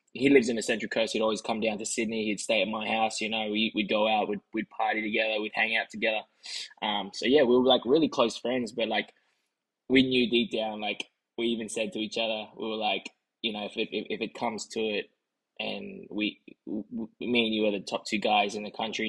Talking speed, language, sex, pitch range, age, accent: 255 wpm, English, male, 105-120 Hz, 10-29, Australian